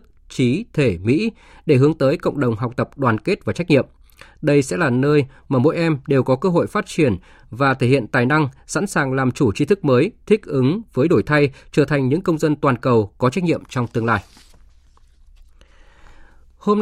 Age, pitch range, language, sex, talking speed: 20-39, 125-160 Hz, Vietnamese, male, 210 wpm